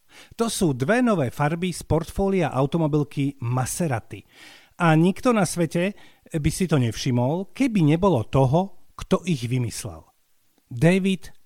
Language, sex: Slovak, male